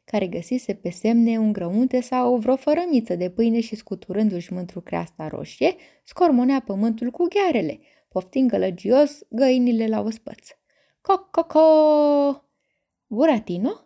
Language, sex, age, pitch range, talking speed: Romanian, female, 20-39, 200-295 Hz, 125 wpm